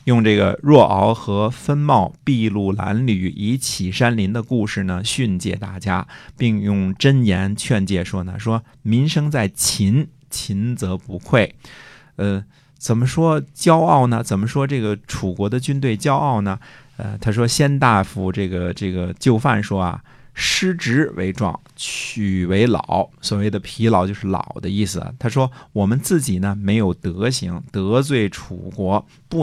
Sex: male